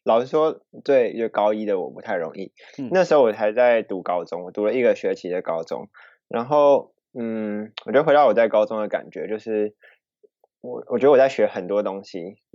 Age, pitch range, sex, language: 20-39, 105-140 Hz, male, Chinese